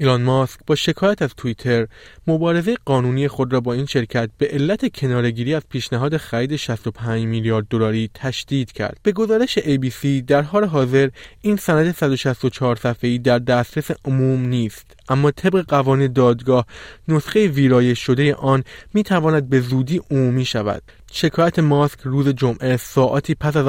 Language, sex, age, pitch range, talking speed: Persian, male, 20-39, 120-140 Hz, 145 wpm